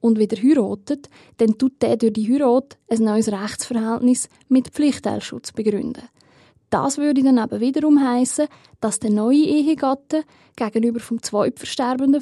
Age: 20-39